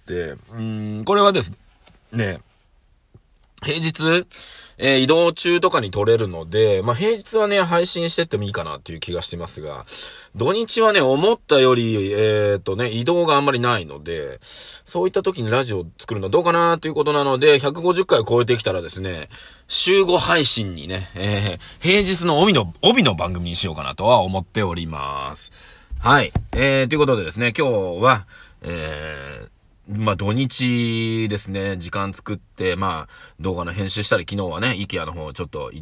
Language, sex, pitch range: Japanese, male, 95-155 Hz